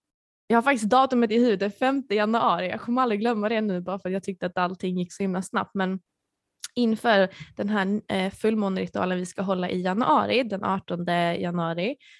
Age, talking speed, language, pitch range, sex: 20-39, 185 wpm, Swedish, 180-220 Hz, female